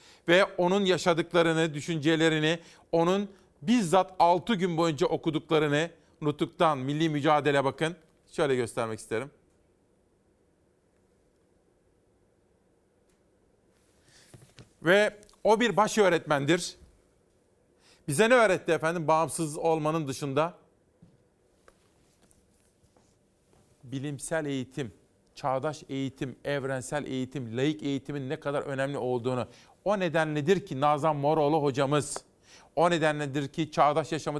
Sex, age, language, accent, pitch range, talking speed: male, 40-59, Turkish, native, 145-170 Hz, 95 wpm